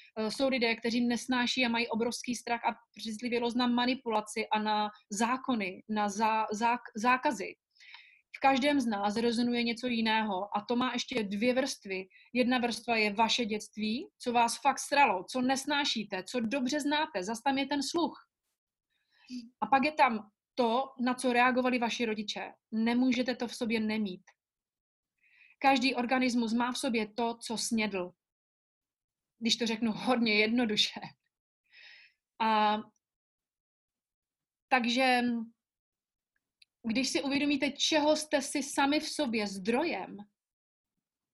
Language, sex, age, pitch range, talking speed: Slovak, female, 30-49, 215-260 Hz, 130 wpm